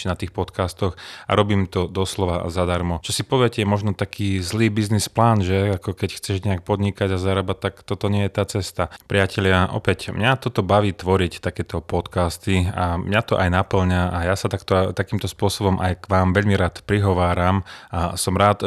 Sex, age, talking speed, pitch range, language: male, 30-49, 190 wpm, 90-105 Hz, Slovak